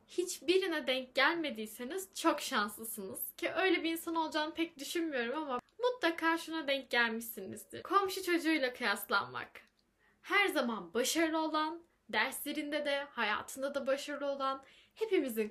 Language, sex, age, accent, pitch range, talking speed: Turkish, female, 10-29, native, 275-355 Hz, 125 wpm